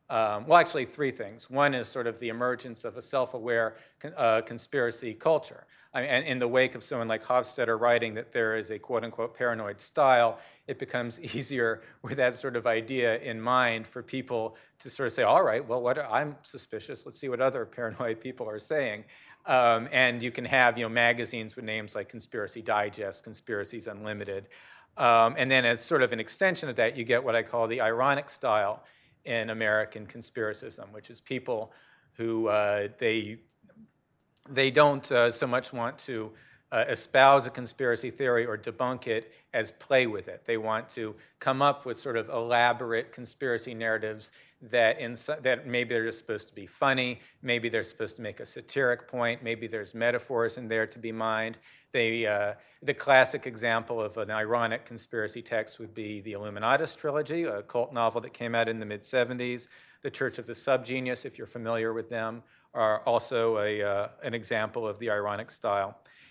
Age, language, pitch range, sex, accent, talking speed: 40-59, English, 110-125 Hz, male, American, 185 wpm